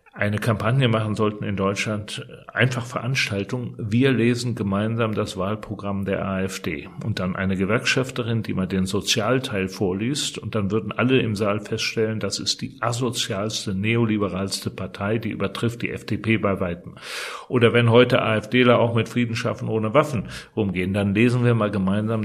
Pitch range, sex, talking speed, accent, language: 100-125 Hz, male, 160 wpm, German, German